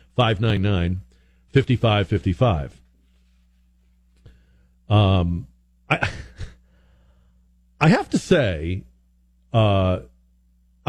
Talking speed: 75 wpm